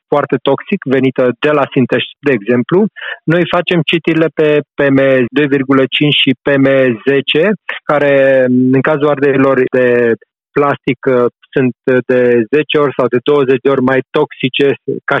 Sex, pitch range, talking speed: male, 130-155 Hz, 125 wpm